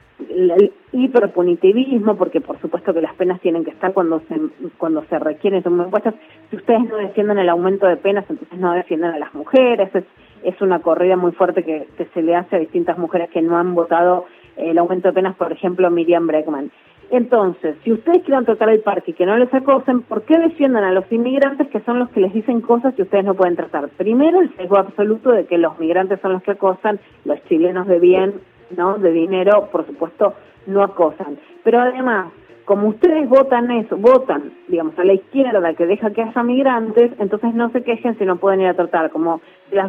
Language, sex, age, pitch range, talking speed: Spanish, female, 30-49, 180-240 Hz, 200 wpm